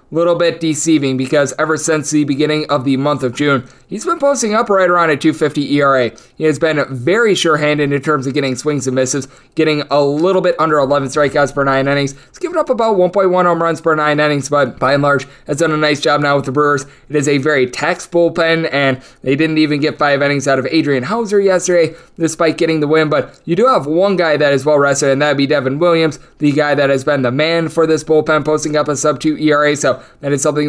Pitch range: 140-175 Hz